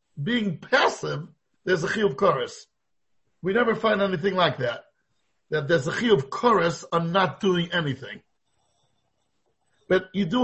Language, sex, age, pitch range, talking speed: English, male, 50-69, 165-210 Hz, 140 wpm